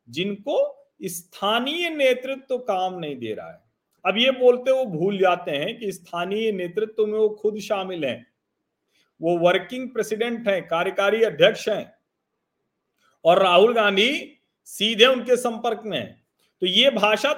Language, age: Hindi, 40-59